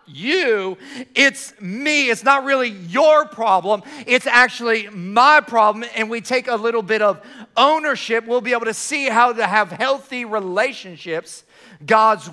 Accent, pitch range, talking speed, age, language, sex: American, 210-250 Hz, 150 wpm, 40-59, English, male